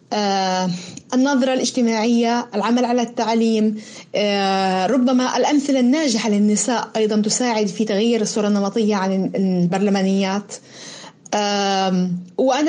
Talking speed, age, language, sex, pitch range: 85 wpm, 30-49, Arabic, female, 205-255 Hz